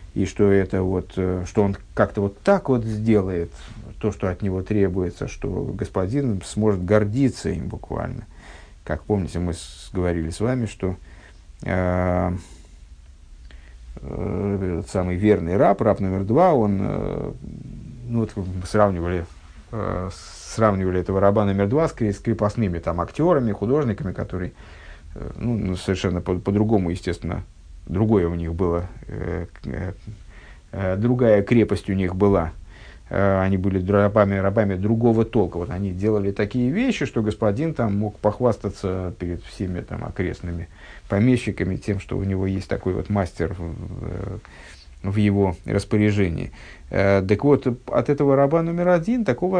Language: Russian